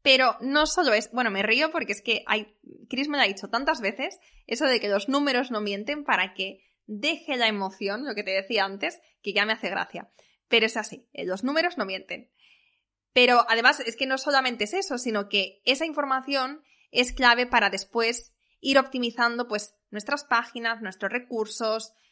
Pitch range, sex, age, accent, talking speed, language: 210-250 Hz, female, 20-39, Spanish, 185 wpm, Spanish